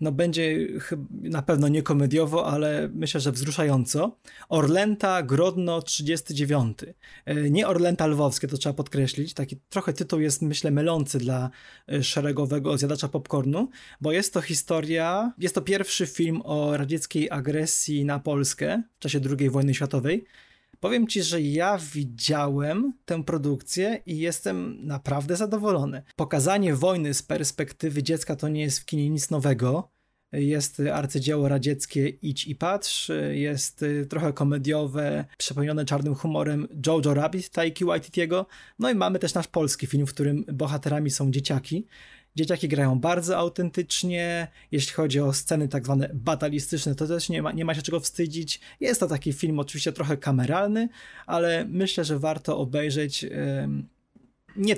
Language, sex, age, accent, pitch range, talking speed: Polish, male, 20-39, native, 140-170 Hz, 140 wpm